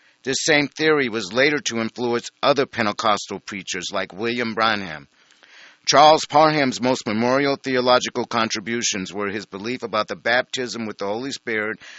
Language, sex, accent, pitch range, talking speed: English, male, American, 110-135 Hz, 145 wpm